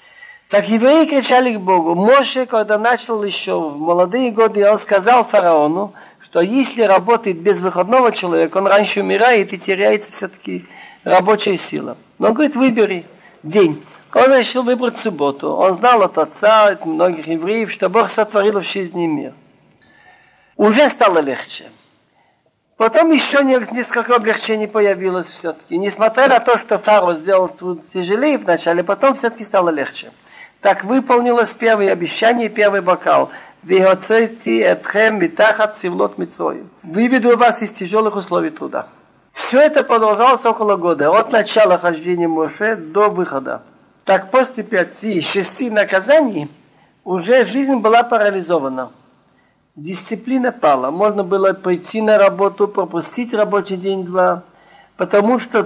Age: 50-69